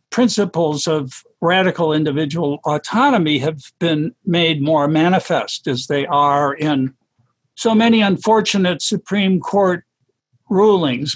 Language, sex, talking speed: English, male, 110 wpm